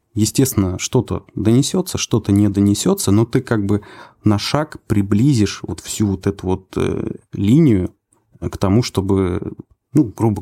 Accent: native